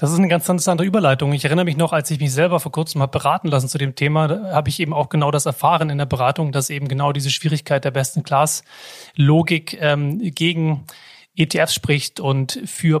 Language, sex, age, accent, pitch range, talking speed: German, male, 30-49, German, 140-170 Hz, 210 wpm